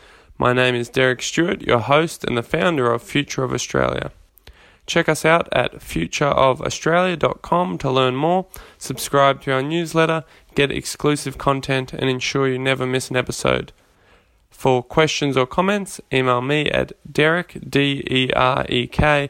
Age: 10-29